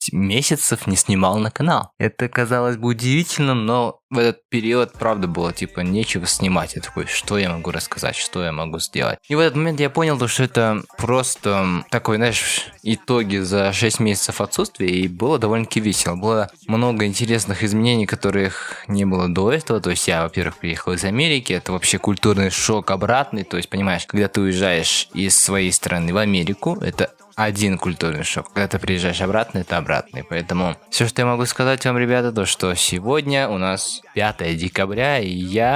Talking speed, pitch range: 180 wpm, 90-115 Hz